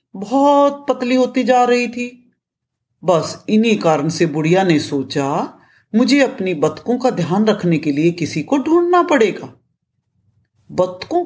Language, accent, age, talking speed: Hindi, native, 50-69, 140 wpm